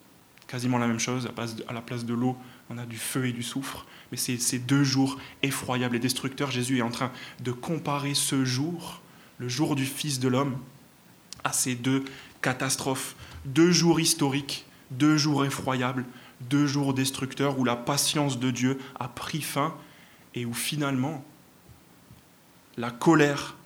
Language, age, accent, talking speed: French, 20-39, French, 160 wpm